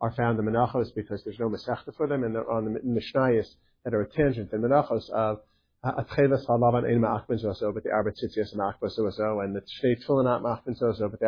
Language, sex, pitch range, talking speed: English, male, 105-135 Hz, 200 wpm